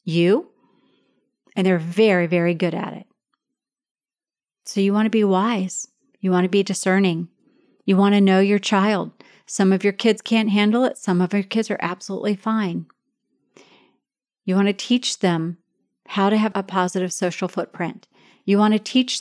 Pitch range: 190-240 Hz